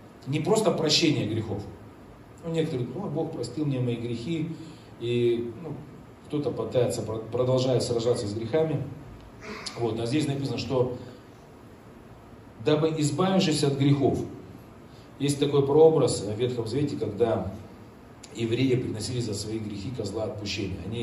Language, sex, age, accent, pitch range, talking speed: Russian, male, 40-59, native, 110-140 Hz, 125 wpm